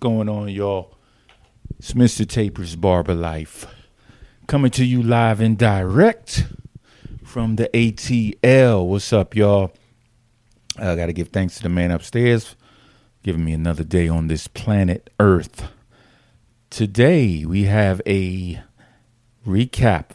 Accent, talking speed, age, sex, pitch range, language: American, 120 wpm, 40-59, male, 90-115 Hz, English